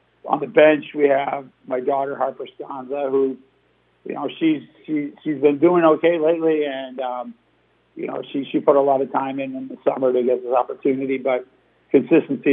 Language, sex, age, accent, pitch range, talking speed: English, male, 50-69, American, 130-145 Hz, 190 wpm